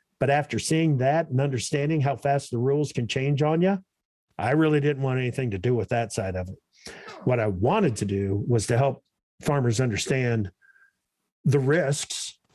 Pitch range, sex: 120-160 Hz, male